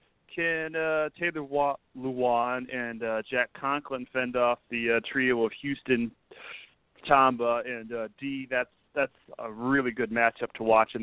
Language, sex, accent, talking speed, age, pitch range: English, male, American, 160 wpm, 40-59, 115-140 Hz